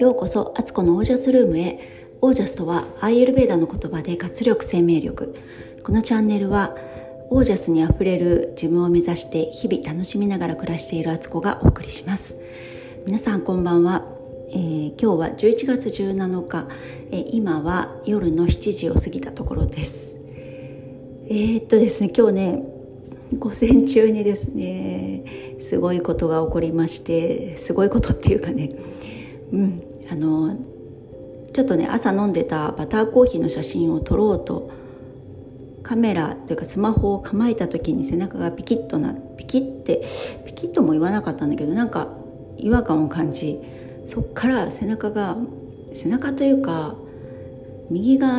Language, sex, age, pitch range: Japanese, female, 40-59, 160-230 Hz